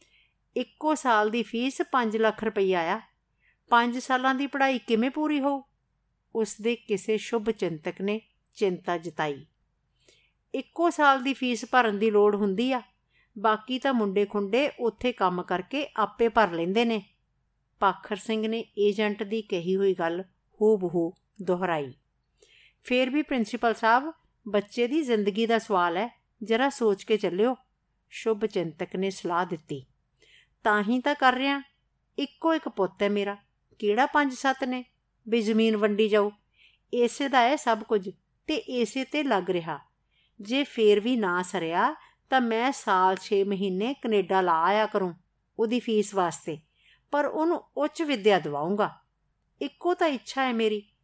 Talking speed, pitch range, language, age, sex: 140 wpm, 190-250 Hz, Punjabi, 50-69, female